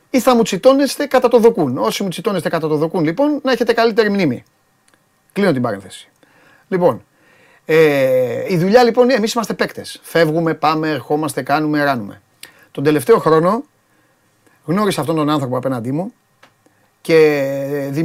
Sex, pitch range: male, 150-220 Hz